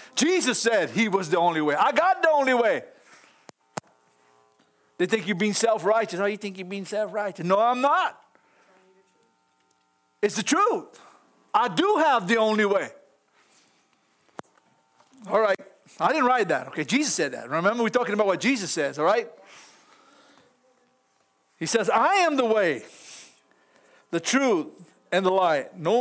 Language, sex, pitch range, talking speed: English, male, 145-230 Hz, 150 wpm